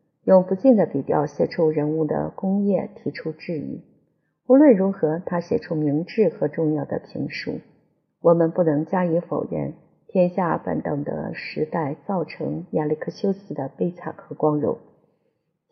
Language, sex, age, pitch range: Chinese, female, 50-69, 155-195 Hz